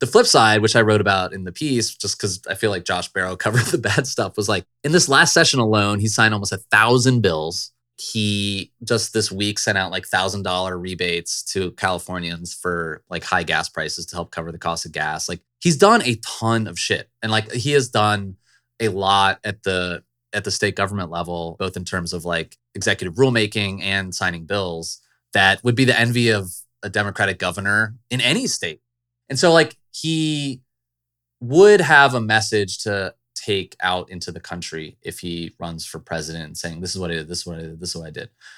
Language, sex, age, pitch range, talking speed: English, male, 20-39, 90-120 Hz, 210 wpm